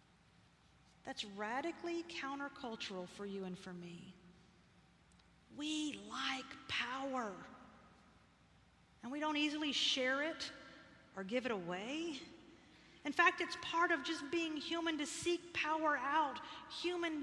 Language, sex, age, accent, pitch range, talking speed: English, female, 40-59, American, 235-305 Hz, 120 wpm